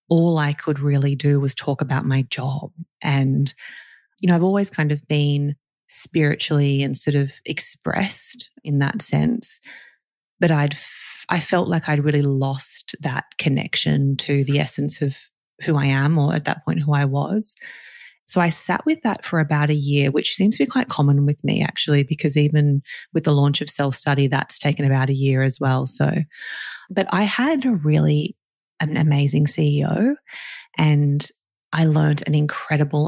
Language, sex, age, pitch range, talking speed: English, female, 20-39, 140-160 Hz, 175 wpm